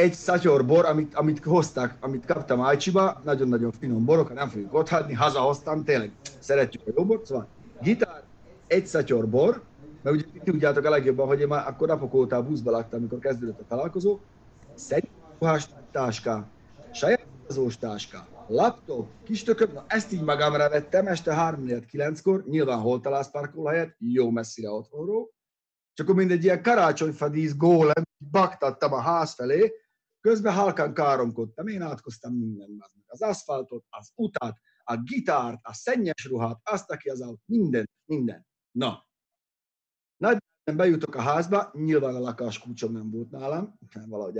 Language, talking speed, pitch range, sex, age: Hungarian, 145 wpm, 125-175 Hz, male, 30-49